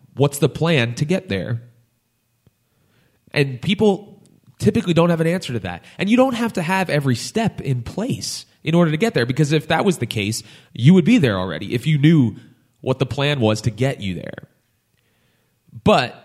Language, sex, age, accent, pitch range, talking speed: English, male, 30-49, American, 105-140 Hz, 195 wpm